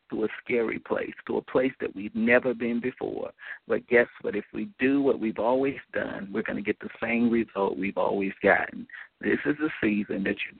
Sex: male